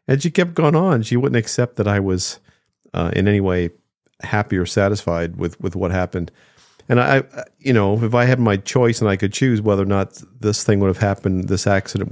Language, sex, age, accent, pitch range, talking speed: English, male, 50-69, American, 95-115 Hz, 230 wpm